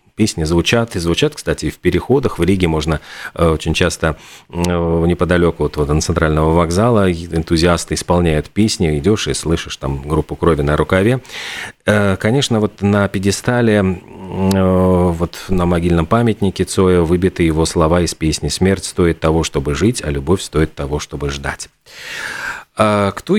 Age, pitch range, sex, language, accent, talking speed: 40-59, 85-110 Hz, male, Russian, native, 140 wpm